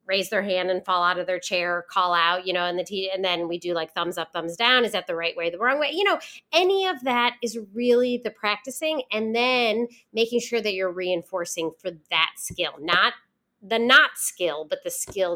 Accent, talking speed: American, 235 wpm